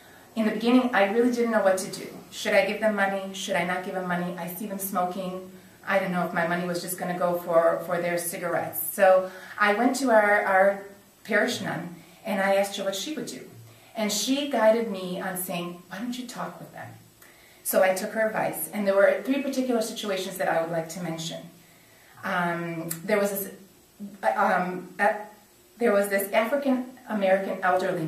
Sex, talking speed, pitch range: female, 205 wpm, 180-215 Hz